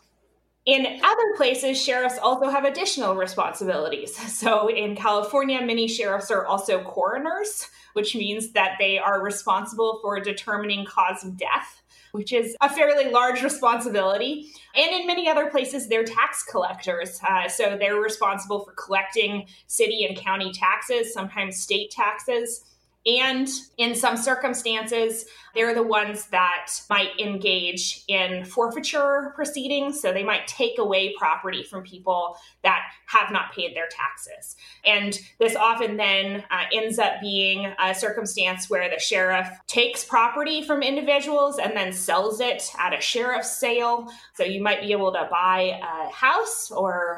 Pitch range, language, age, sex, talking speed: 195-270 Hz, English, 20-39, female, 150 wpm